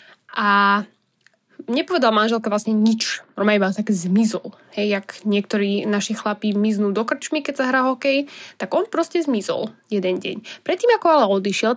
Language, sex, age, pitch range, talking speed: Slovak, female, 10-29, 200-260 Hz, 155 wpm